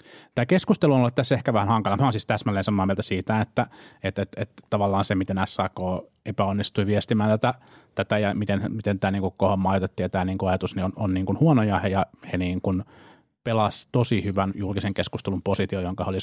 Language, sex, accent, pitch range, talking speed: Finnish, male, native, 95-115 Hz, 215 wpm